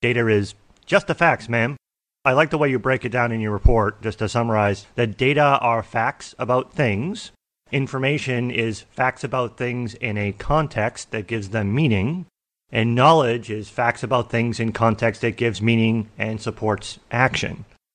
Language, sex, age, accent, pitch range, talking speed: English, male, 30-49, American, 105-125 Hz, 175 wpm